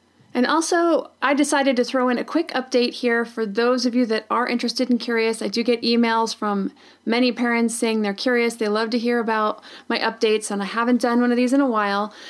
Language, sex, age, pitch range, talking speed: English, female, 30-49, 220-250 Hz, 230 wpm